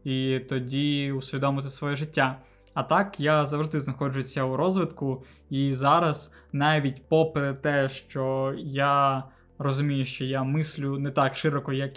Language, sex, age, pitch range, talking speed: Ukrainian, male, 20-39, 135-155 Hz, 135 wpm